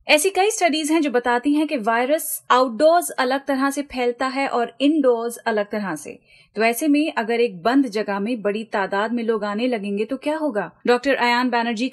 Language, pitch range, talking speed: Hindi, 230-275 Hz, 200 wpm